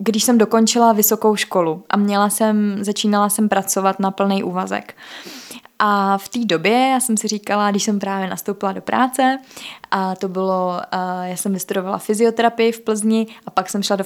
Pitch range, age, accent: 195-230 Hz, 20-39, native